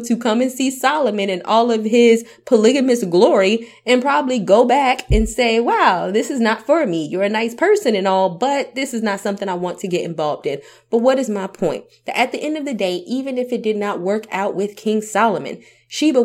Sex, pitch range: female, 185-240 Hz